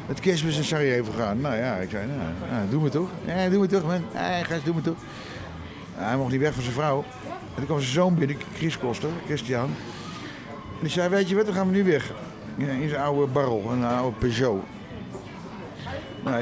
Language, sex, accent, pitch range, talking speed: Dutch, male, Dutch, 125-150 Hz, 220 wpm